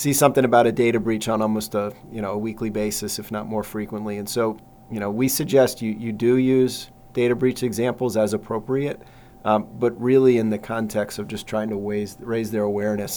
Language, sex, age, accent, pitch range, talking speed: English, male, 40-59, American, 105-120 Hz, 215 wpm